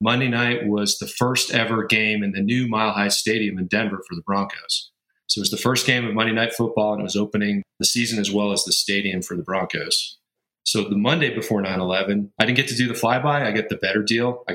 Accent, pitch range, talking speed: American, 100-120 Hz, 250 wpm